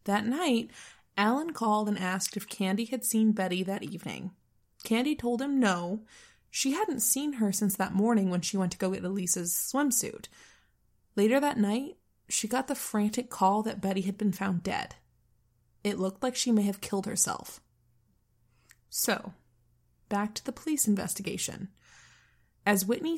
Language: English